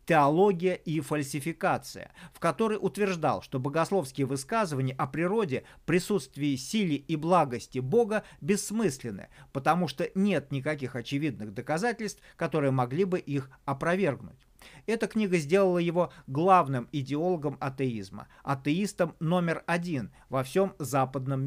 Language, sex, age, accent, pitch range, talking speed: Russian, male, 40-59, native, 140-185 Hz, 115 wpm